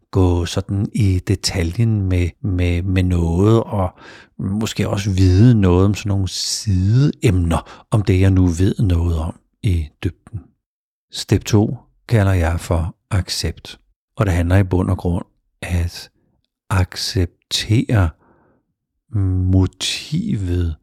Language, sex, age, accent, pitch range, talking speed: Danish, male, 60-79, native, 85-105 Hz, 120 wpm